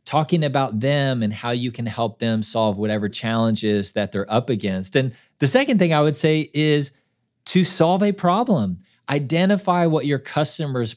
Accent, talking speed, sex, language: American, 175 wpm, male, English